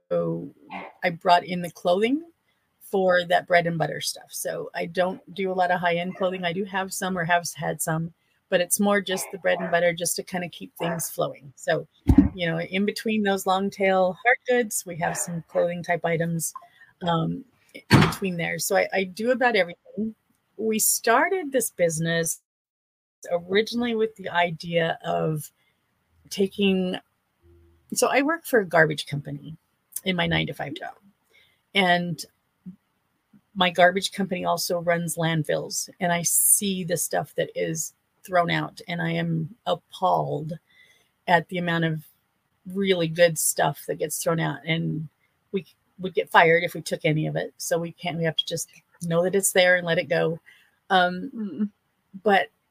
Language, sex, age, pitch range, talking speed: English, female, 40-59, 165-195 Hz, 175 wpm